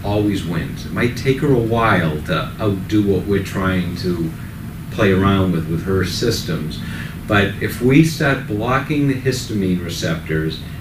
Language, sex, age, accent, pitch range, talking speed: English, male, 50-69, American, 95-120 Hz, 155 wpm